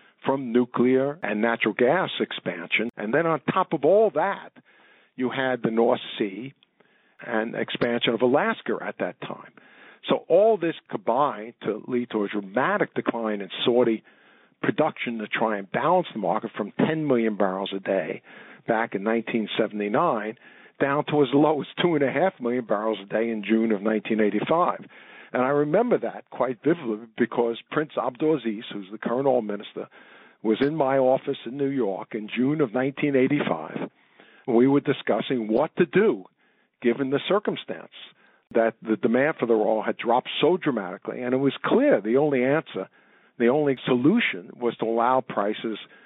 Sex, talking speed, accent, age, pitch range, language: male, 160 wpm, American, 50-69, 110-135 Hz, English